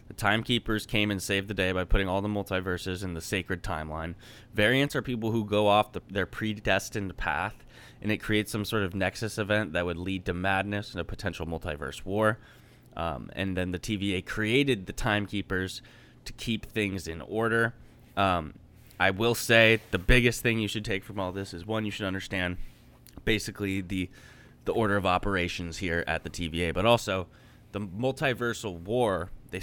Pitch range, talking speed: 90-115 Hz, 180 wpm